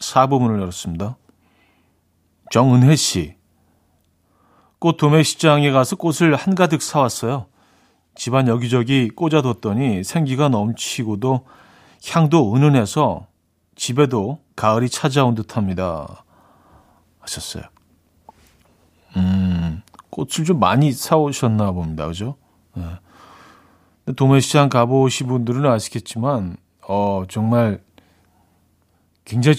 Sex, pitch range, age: male, 100-140 Hz, 40-59